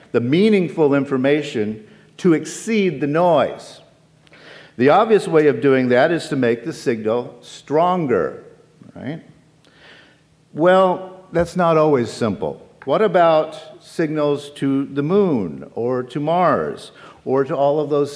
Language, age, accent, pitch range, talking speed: English, 50-69, American, 125-170 Hz, 130 wpm